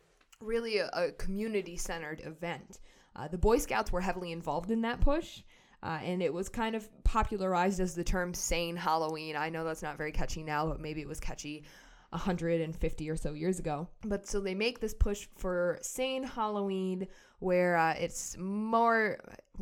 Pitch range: 160-195 Hz